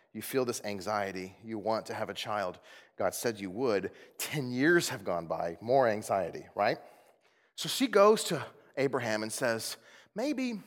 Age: 30-49